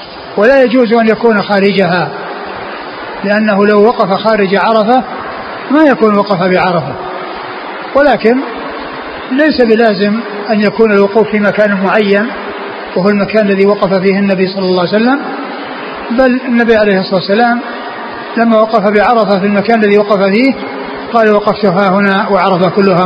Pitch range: 200-235 Hz